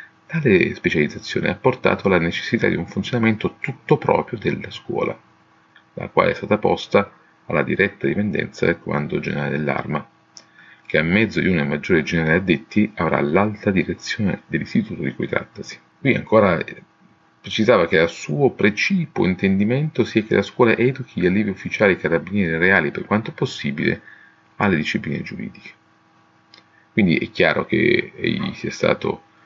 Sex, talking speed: male, 145 wpm